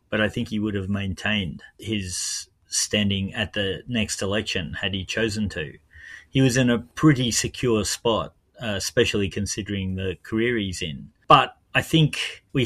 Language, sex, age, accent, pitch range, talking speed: English, male, 30-49, Australian, 100-120 Hz, 165 wpm